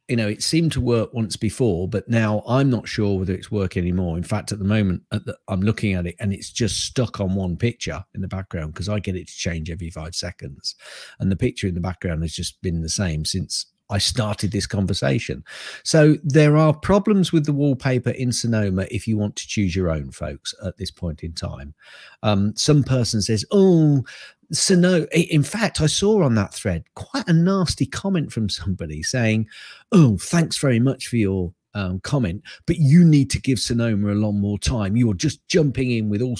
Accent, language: British, English